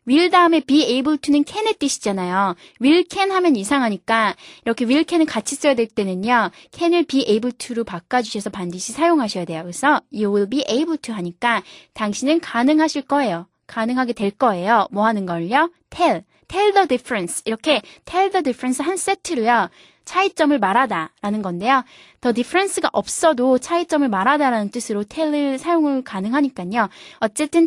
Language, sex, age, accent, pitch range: Korean, female, 20-39, native, 215-305 Hz